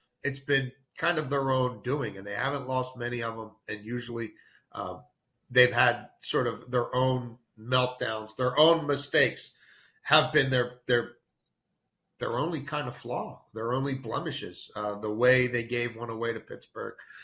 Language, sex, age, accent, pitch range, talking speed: English, male, 40-59, American, 115-140 Hz, 165 wpm